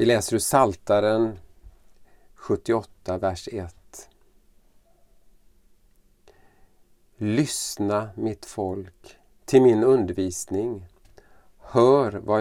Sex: male